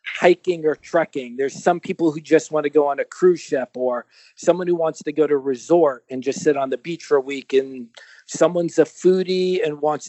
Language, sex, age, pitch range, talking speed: English, male, 40-59, 150-185 Hz, 225 wpm